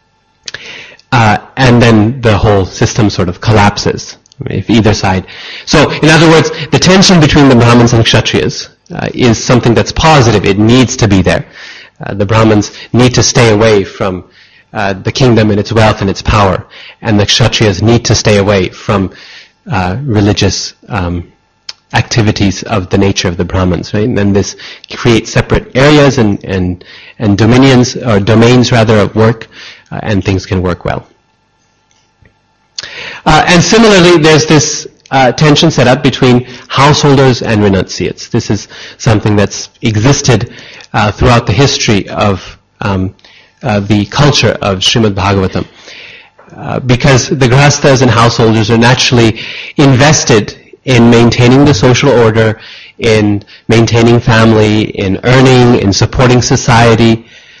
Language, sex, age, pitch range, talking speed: English, male, 30-49, 105-130 Hz, 150 wpm